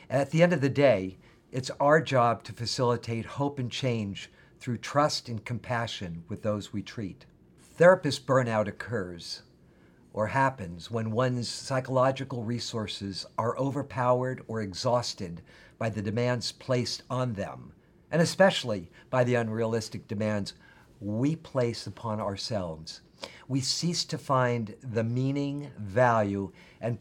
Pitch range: 105-135 Hz